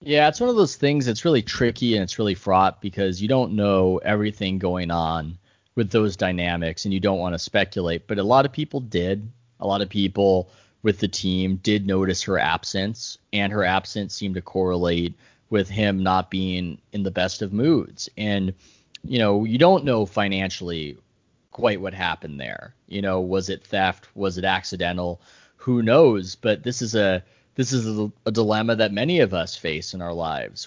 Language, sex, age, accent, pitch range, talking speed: English, male, 30-49, American, 95-110 Hz, 195 wpm